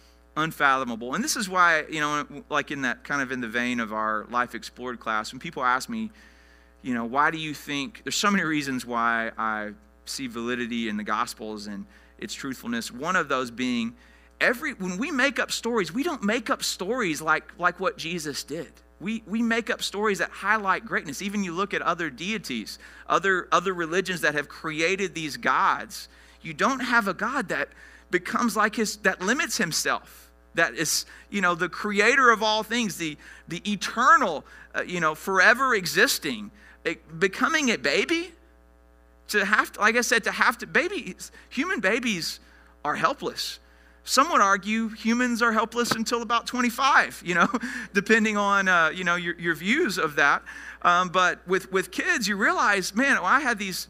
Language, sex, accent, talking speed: English, male, American, 185 wpm